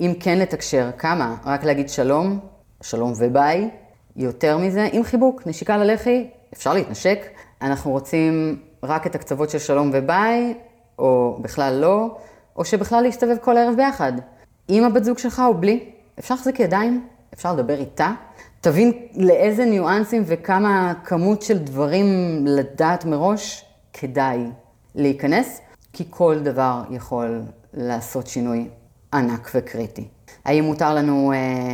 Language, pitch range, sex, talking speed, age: Hebrew, 130-205 Hz, female, 130 wpm, 30-49